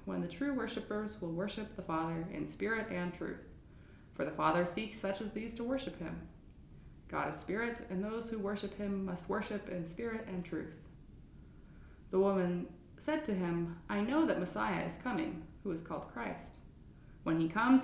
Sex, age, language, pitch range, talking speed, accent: female, 20-39, English, 170-235 Hz, 180 wpm, American